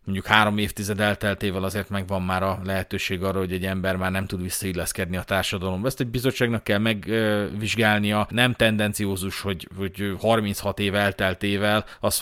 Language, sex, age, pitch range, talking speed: Hungarian, male, 30-49, 95-115 Hz, 155 wpm